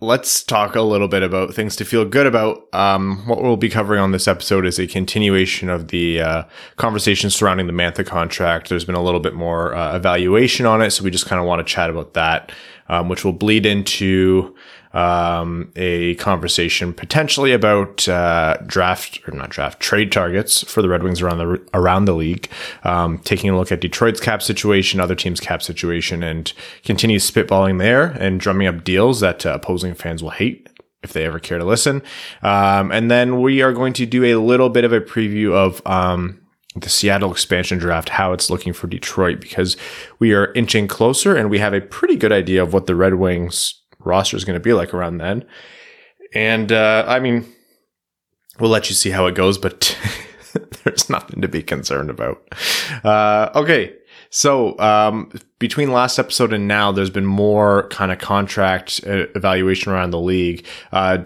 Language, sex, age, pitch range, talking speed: English, male, 20-39, 90-105 Hz, 195 wpm